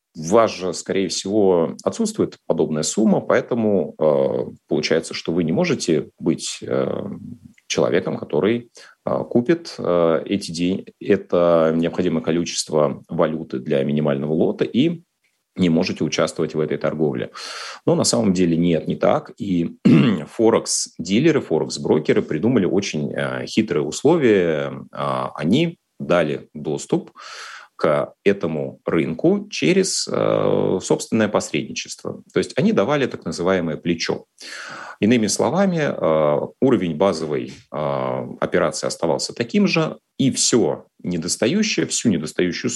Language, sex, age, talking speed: Russian, male, 30-49, 120 wpm